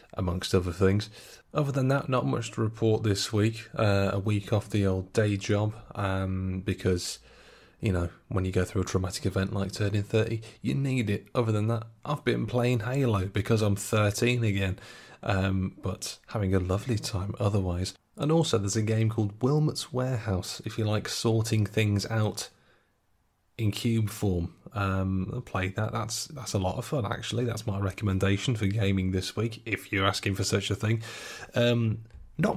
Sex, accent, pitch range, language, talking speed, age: male, British, 100-120 Hz, English, 180 wpm, 20-39